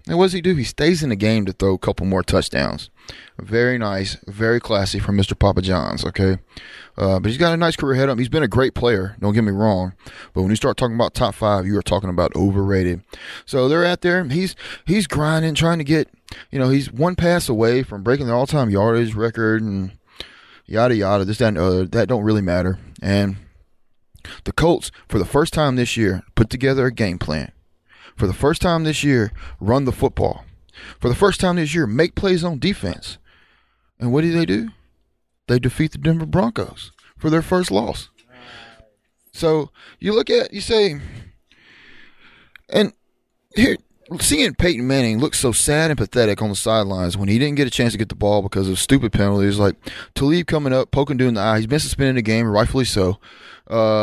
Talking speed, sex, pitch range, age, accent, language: 205 wpm, male, 100-145 Hz, 20-39, American, English